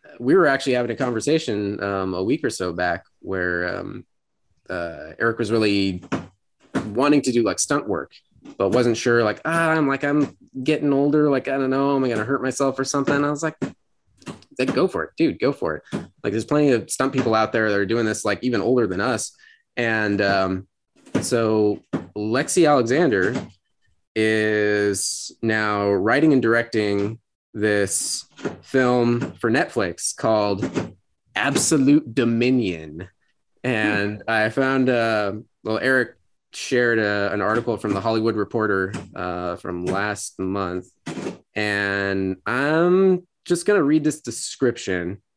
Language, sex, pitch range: English, male, 100-135 Hz